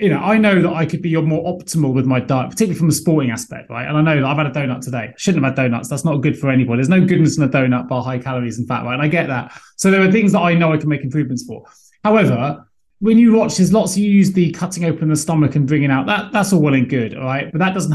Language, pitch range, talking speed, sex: English, 140-180 Hz, 310 wpm, male